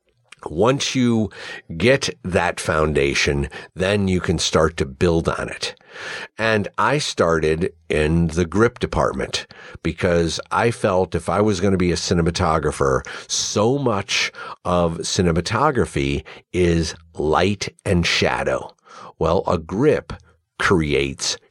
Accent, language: American, English